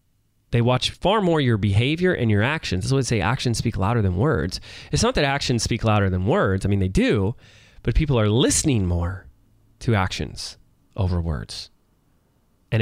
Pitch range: 105-145 Hz